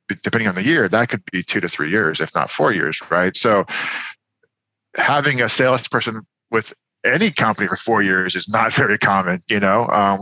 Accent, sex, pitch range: American, male, 95-115 Hz